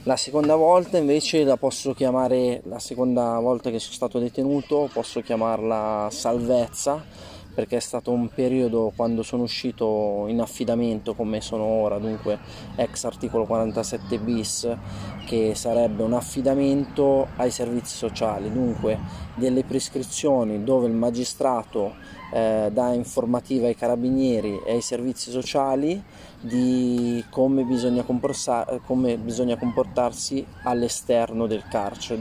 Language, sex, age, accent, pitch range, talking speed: Italian, male, 20-39, native, 110-125 Hz, 115 wpm